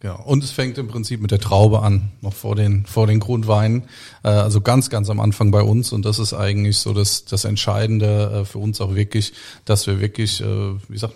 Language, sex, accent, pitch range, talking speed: German, male, German, 105-115 Hz, 215 wpm